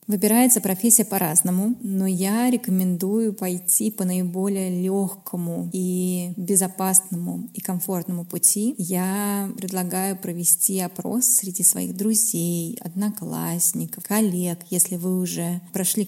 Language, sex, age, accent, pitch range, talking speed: Russian, female, 20-39, native, 180-215 Hz, 105 wpm